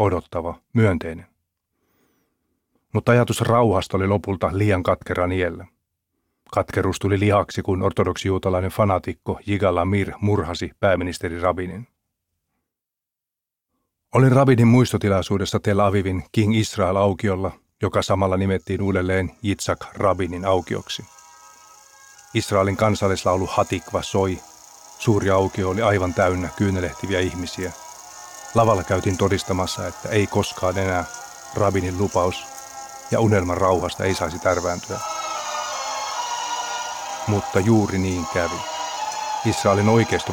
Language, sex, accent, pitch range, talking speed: Finnish, male, native, 90-110 Hz, 100 wpm